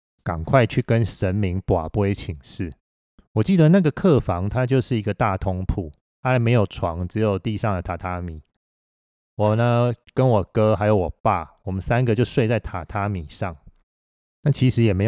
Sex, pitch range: male, 90-120 Hz